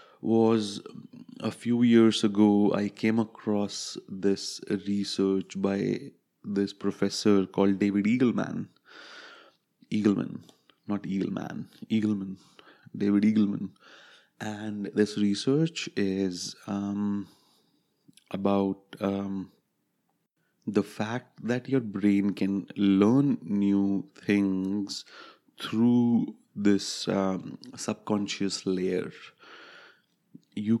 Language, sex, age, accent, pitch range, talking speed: English, male, 30-49, Indian, 100-105 Hz, 85 wpm